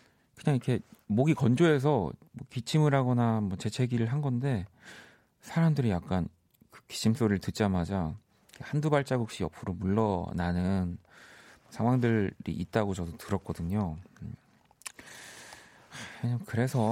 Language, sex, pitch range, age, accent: Korean, male, 95-130 Hz, 40-59, native